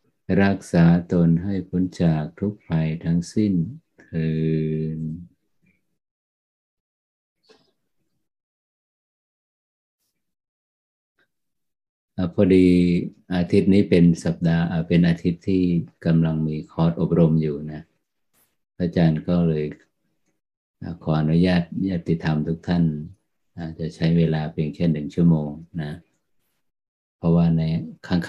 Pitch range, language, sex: 75-85 Hz, Thai, male